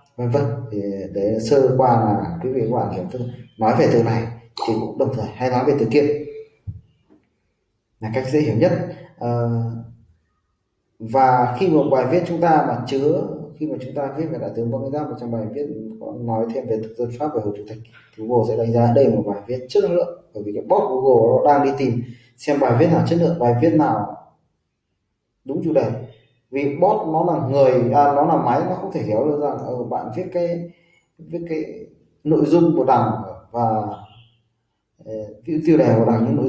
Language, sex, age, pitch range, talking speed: Vietnamese, male, 20-39, 115-150 Hz, 205 wpm